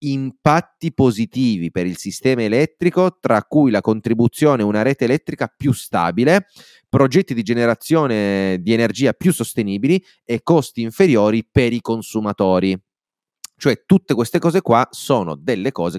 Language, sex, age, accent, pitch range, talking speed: Italian, male, 30-49, native, 95-130 Hz, 140 wpm